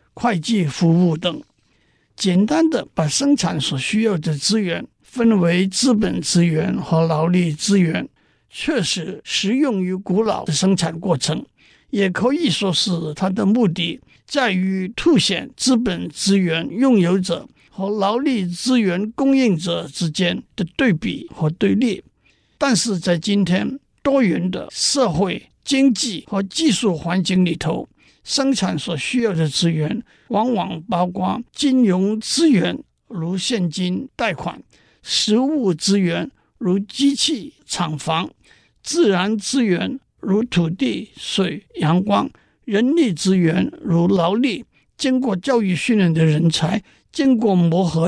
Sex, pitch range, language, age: male, 175-235 Hz, Chinese, 50-69